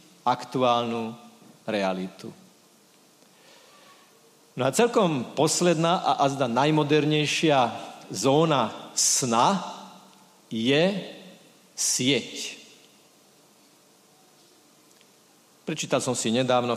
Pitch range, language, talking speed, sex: 130-185 Hz, Slovak, 65 wpm, male